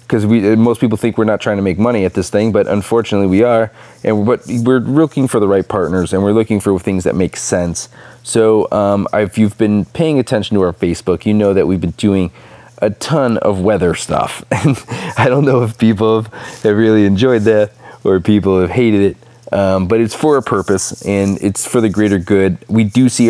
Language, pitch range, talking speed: English, 95-110 Hz, 220 wpm